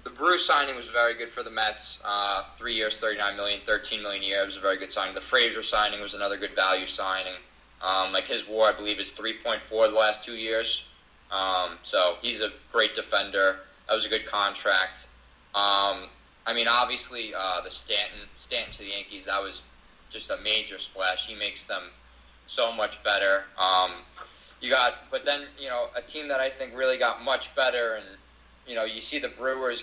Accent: American